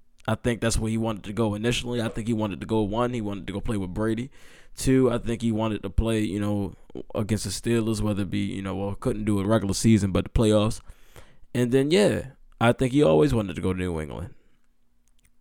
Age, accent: 10-29, American